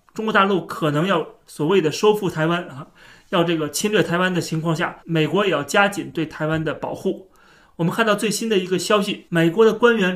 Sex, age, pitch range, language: male, 30-49, 155-200 Hz, Chinese